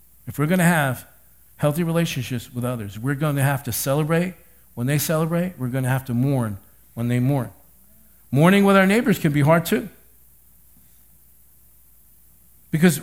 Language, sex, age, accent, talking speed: English, male, 50-69, American, 160 wpm